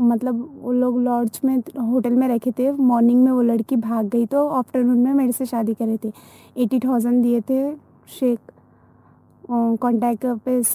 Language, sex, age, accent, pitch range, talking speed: English, female, 20-39, Indian, 235-260 Hz, 165 wpm